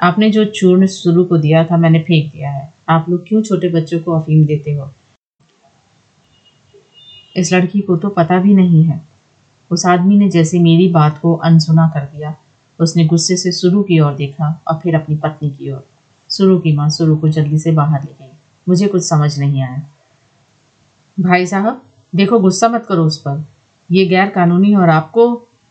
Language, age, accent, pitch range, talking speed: Hindi, 30-49, native, 150-185 Hz, 180 wpm